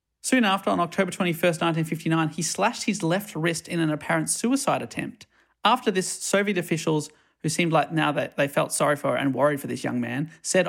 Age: 30-49